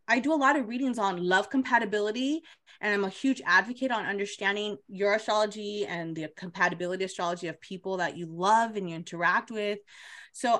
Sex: female